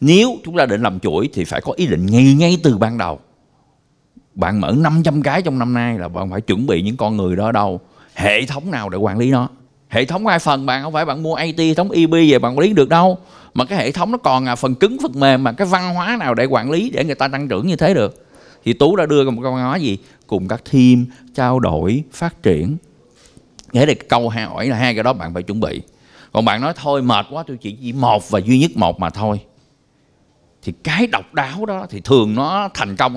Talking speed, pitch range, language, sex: 250 wpm, 110-160 Hz, Vietnamese, male